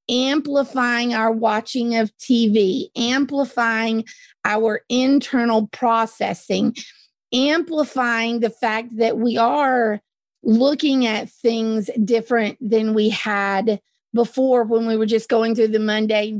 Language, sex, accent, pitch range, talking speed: English, female, American, 220-265 Hz, 115 wpm